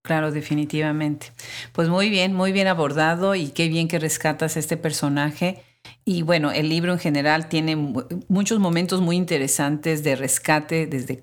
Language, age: Spanish, 40-59